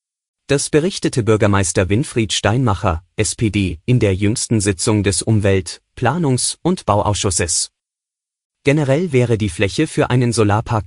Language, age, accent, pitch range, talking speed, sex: German, 30-49, German, 100-130 Hz, 120 wpm, male